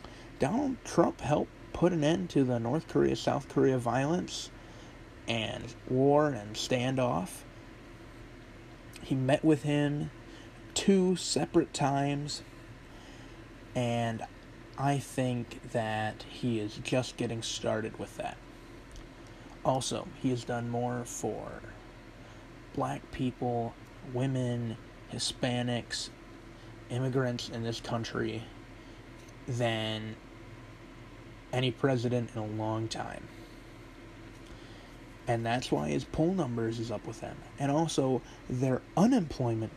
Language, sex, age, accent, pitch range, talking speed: English, male, 30-49, American, 115-130 Hz, 105 wpm